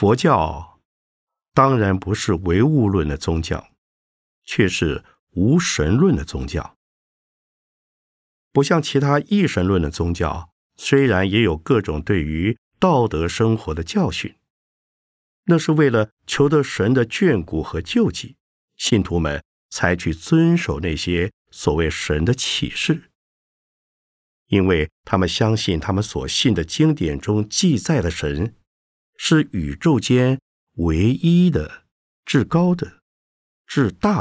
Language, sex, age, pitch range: Chinese, male, 50-69, 80-135 Hz